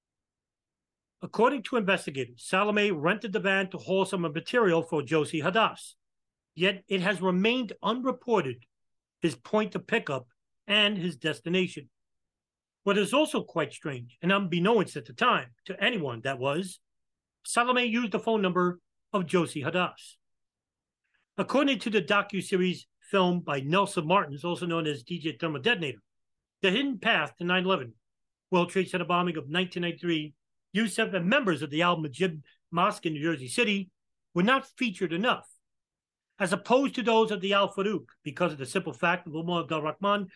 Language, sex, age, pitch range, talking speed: English, male, 40-59, 155-205 Hz, 155 wpm